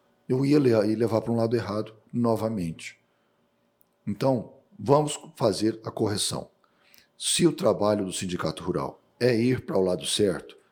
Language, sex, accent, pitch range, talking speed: Portuguese, male, Brazilian, 100-125 Hz, 140 wpm